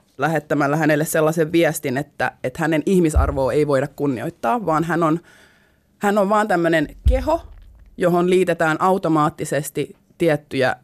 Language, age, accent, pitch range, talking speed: Finnish, 20-39, native, 150-180 Hz, 125 wpm